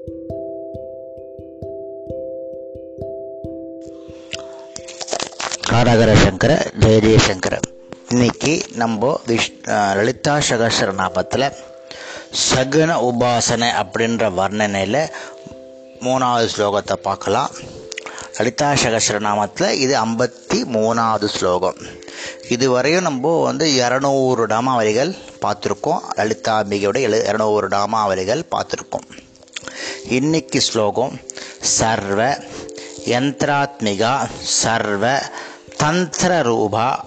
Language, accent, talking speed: Tamil, native, 60 wpm